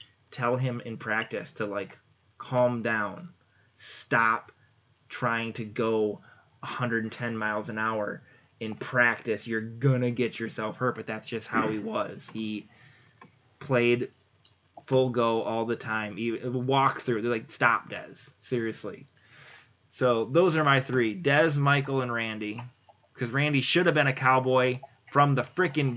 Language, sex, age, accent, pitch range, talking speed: English, male, 20-39, American, 110-135 Hz, 145 wpm